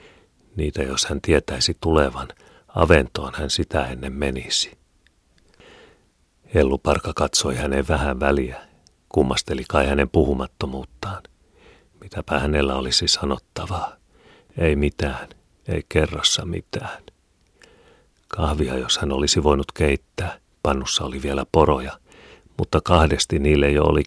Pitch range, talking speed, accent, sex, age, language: 70-85 Hz, 105 wpm, native, male, 40-59, Finnish